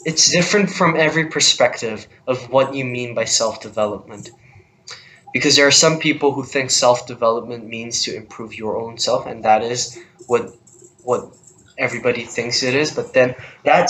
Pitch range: 115-140 Hz